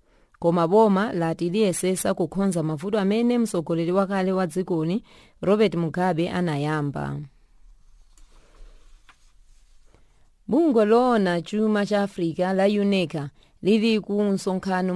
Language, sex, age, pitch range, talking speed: English, female, 30-49, 165-200 Hz, 90 wpm